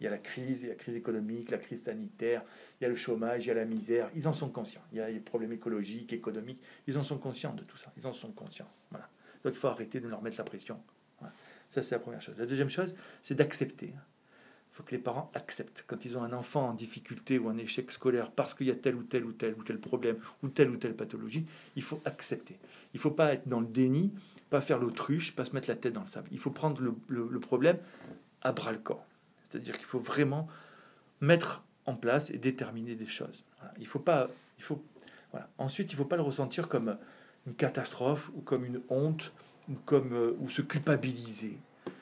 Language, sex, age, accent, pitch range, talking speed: French, male, 40-59, French, 120-145 Hz, 240 wpm